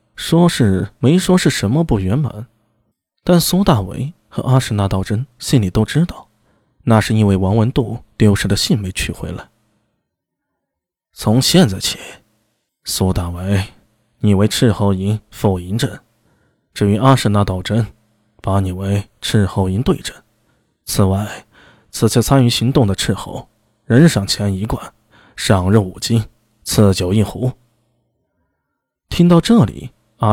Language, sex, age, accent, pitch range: Chinese, male, 20-39, native, 105-140 Hz